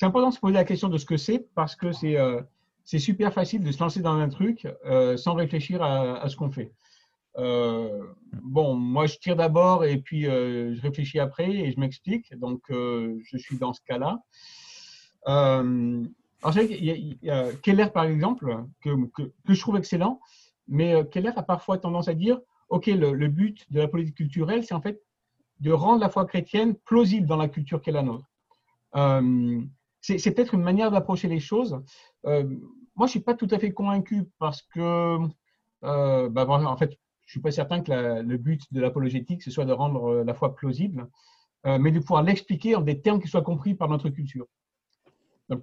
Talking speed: 215 wpm